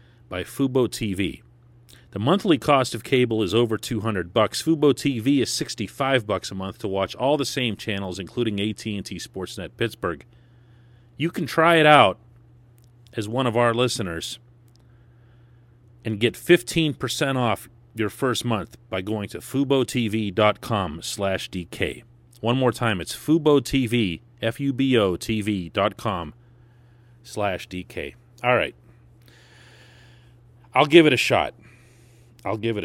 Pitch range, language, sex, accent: 110-120 Hz, English, male, American